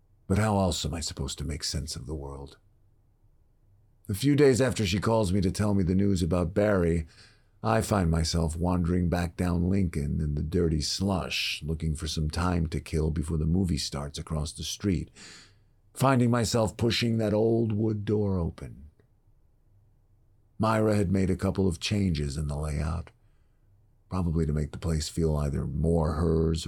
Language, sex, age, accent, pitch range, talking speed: English, male, 50-69, American, 80-105 Hz, 175 wpm